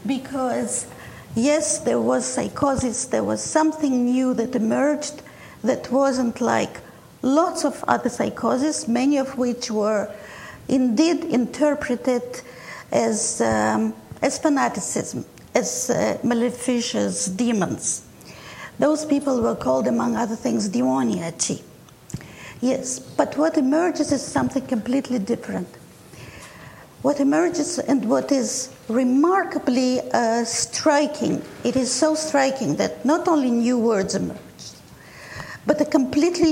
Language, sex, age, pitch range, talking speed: English, female, 50-69, 235-290 Hz, 115 wpm